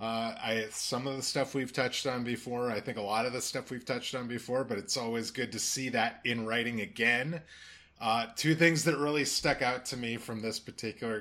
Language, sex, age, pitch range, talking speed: English, male, 30-49, 110-135 Hz, 230 wpm